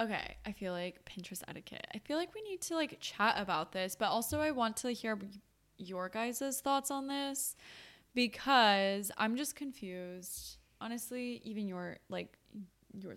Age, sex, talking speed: 10-29, female, 165 wpm